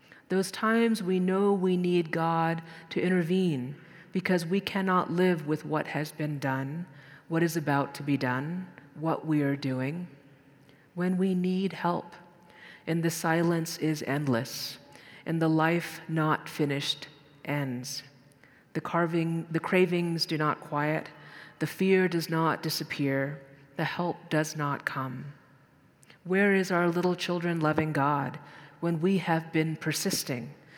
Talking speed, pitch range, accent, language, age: 140 wpm, 145-175 Hz, American, English, 40-59